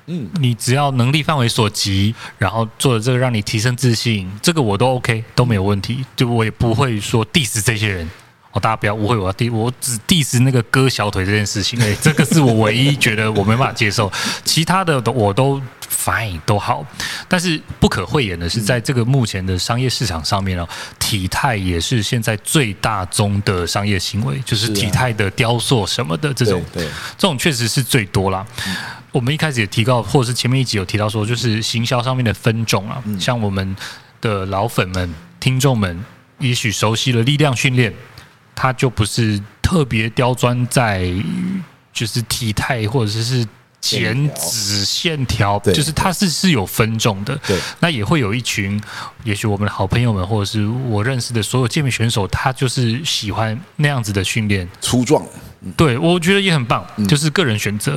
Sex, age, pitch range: male, 20-39, 105-130 Hz